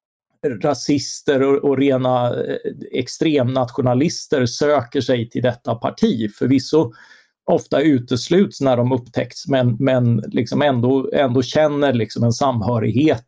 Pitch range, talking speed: 120-145 Hz, 115 wpm